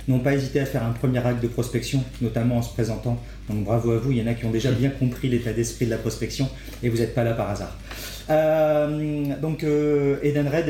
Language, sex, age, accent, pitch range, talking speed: French, male, 40-59, French, 115-135 Hz, 235 wpm